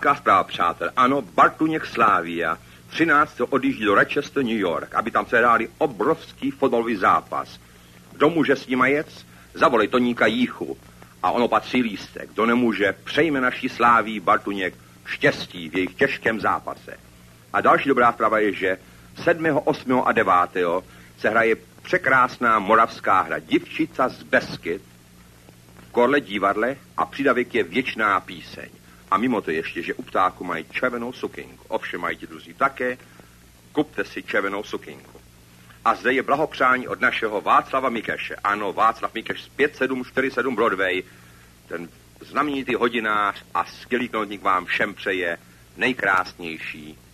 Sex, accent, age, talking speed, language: male, Czech, 60-79, 135 wpm, English